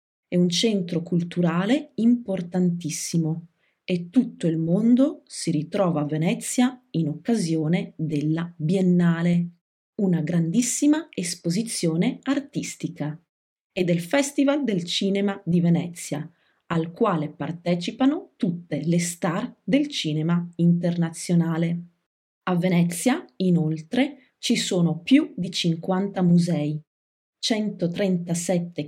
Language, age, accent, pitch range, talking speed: English, 30-49, Italian, 170-215 Hz, 100 wpm